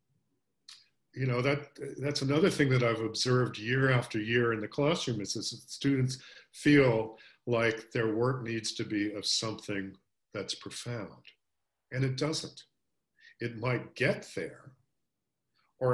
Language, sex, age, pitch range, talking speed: English, male, 50-69, 115-145 Hz, 145 wpm